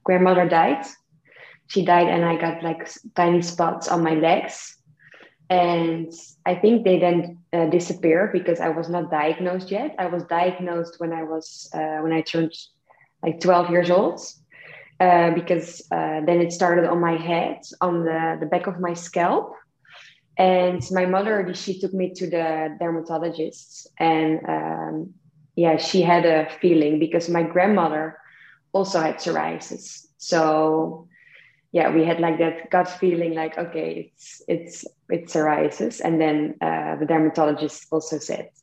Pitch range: 160-180 Hz